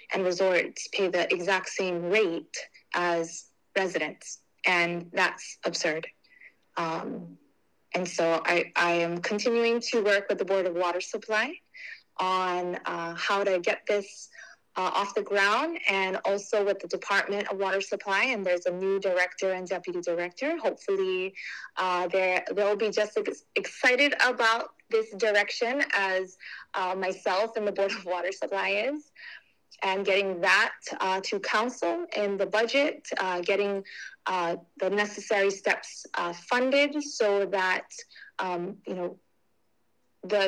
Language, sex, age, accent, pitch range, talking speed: English, female, 20-39, American, 180-230 Hz, 140 wpm